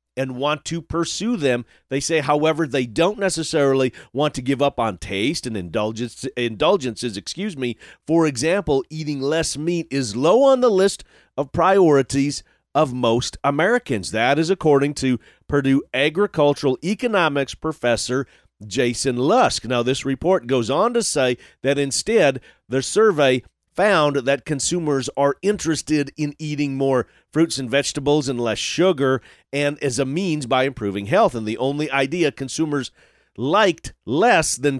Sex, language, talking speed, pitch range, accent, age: male, English, 150 wpm, 125-155 Hz, American, 40-59